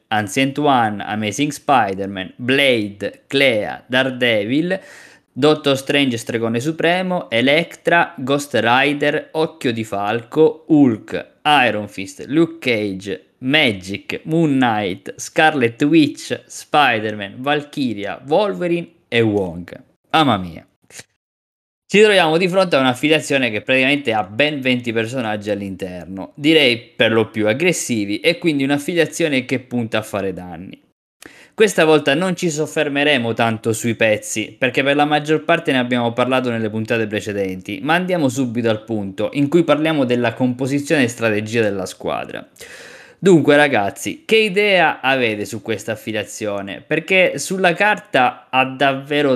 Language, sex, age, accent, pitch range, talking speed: Italian, male, 20-39, native, 110-155 Hz, 130 wpm